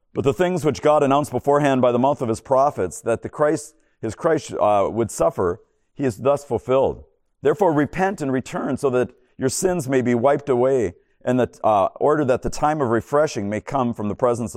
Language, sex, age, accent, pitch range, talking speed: English, male, 50-69, American, 110-140 Hz, 210 wpm